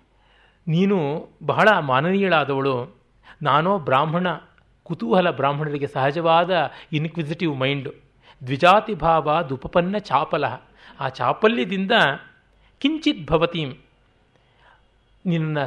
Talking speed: 70 wpm